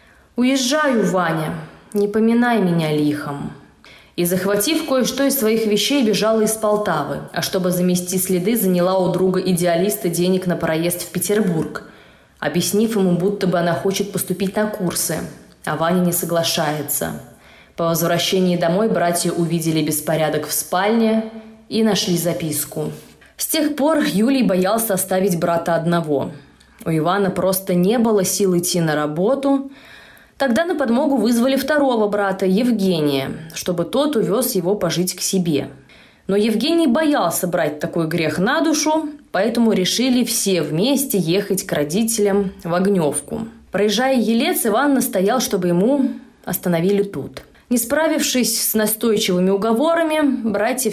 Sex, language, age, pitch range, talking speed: female, Russian, 20-39, 175-230 Hz, 135 wpm